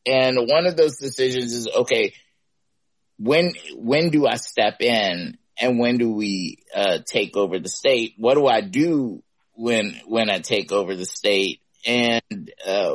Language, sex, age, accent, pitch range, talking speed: English, male, 30-49, American, 115-145 Hz, 160 wpm